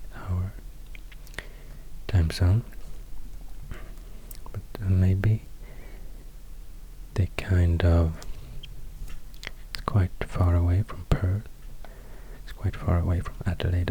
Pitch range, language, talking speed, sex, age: 90-105 Hz, English, 85 wpm, male, 30-49